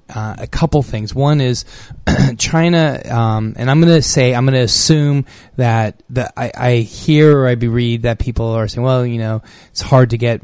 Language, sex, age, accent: English, male, 20-39, American